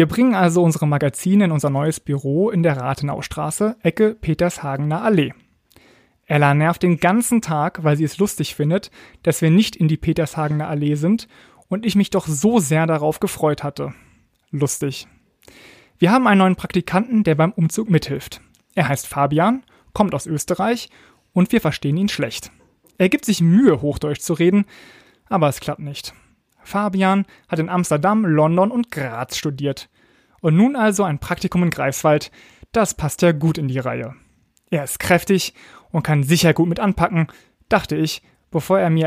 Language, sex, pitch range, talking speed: German, male, 150-195 Hz, 170 wpm